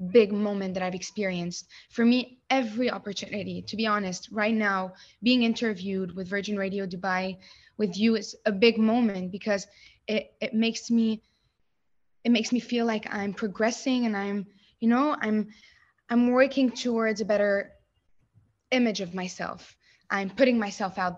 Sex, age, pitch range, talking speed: female, 20-39, 190-230 Hz, 155 wpm